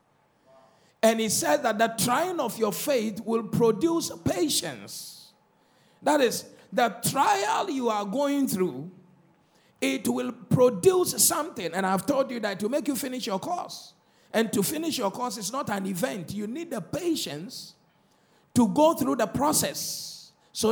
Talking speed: 155 wpm